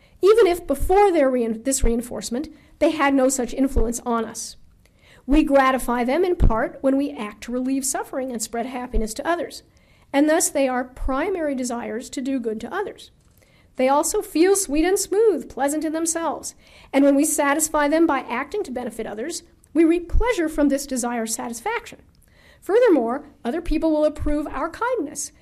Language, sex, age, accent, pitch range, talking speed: English, female, 50-69, American, 255-315 Hz, 175 wpm